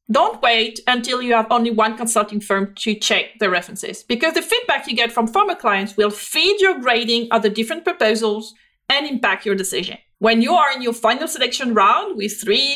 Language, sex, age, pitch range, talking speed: English, female, 40-59, 220-285 Hz, 200 wpm